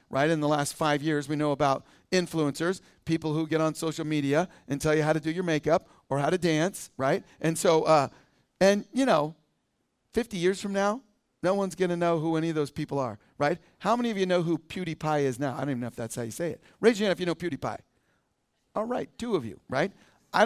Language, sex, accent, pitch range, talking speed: English, male, American, 160-210 Hz, 245 wpm